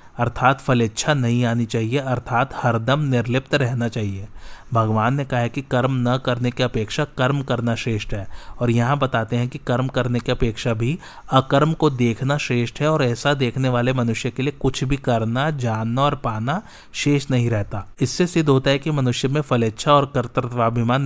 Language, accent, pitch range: Hindi, native, 115-135 Hz